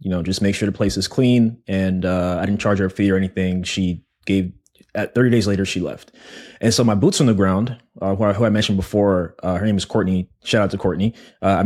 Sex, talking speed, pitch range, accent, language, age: male, 270 wpm, 95-115 Hz, American, English, 20-39